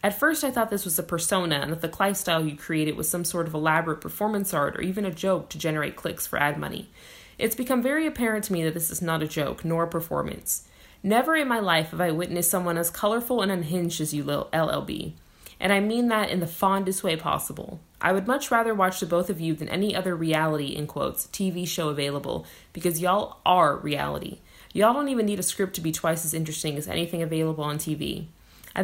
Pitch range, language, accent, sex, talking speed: 160-205 Hz, English, American, female, 225 wpm